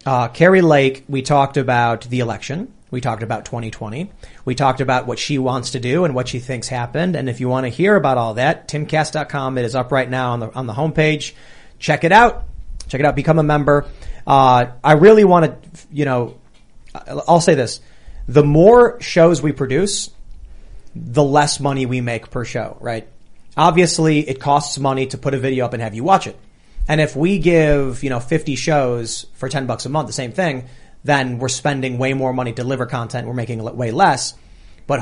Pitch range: 125-150 Hz